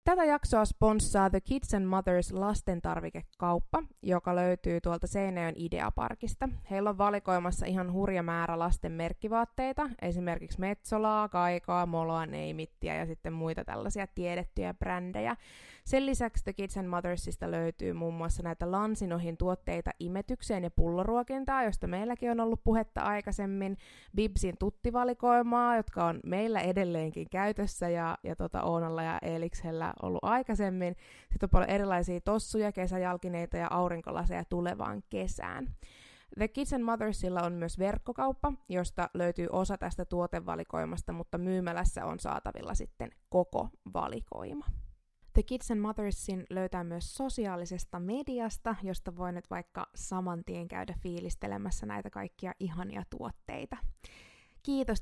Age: 20-39